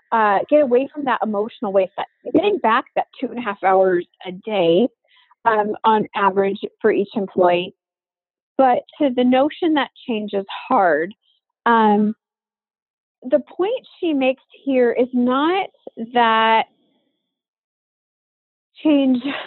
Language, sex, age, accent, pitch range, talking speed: English, female, 30-49, American, 205-275 Hz, 130 wpm